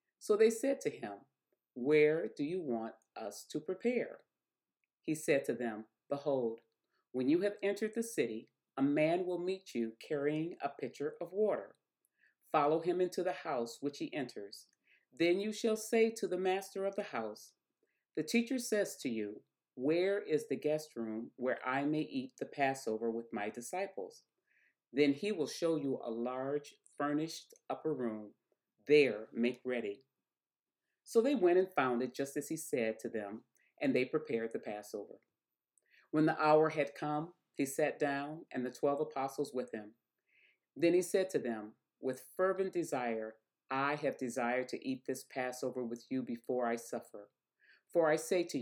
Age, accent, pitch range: 40-59, American, 125-185 Hz